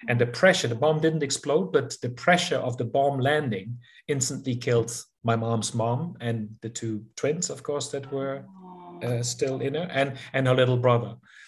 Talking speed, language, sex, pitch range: 190 wpm, English, male, 120-140 Hz